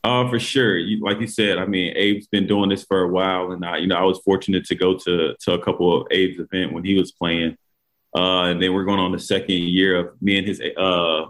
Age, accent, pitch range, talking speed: 20-39, American, 90-95 Hz, 265 wpm